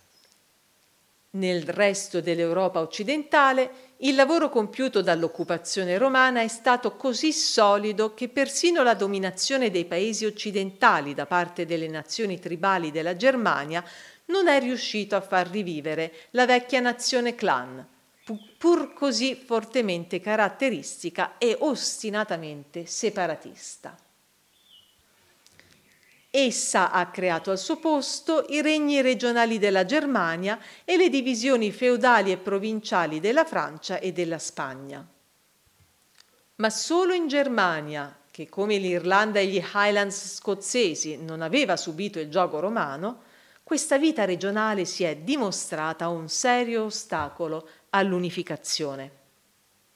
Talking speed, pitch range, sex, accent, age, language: 110 wpm, 175-250 Hz, female, native, 50-69, Italian